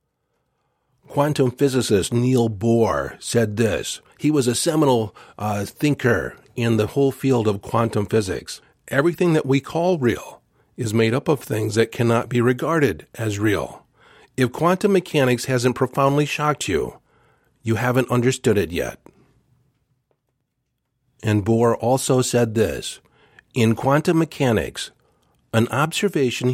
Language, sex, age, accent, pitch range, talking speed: English, male, 50-69, American, 115-140 Hz, 130 wpm